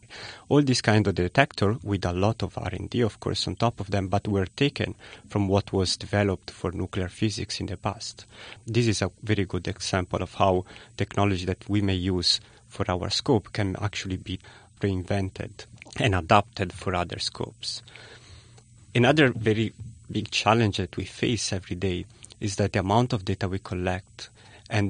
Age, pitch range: 30-49, 100-115 Hz